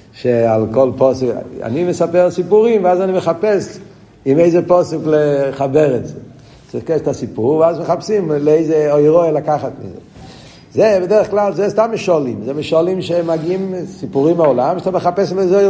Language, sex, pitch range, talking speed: Hebrew, male, 105-155 Hz, 160 wpm